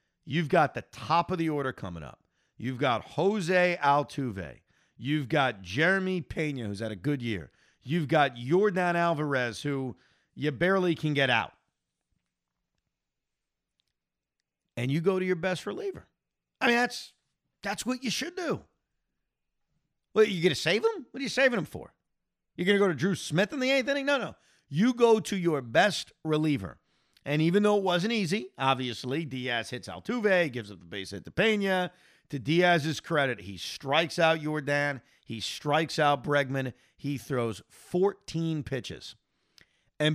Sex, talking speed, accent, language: male, 165 wpm, American, English